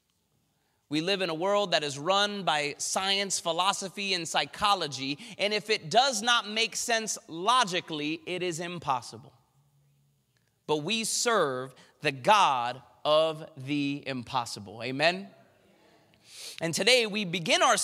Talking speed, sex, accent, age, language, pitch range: 130 wpm, male, American, 30-49, English, 140-215 Hz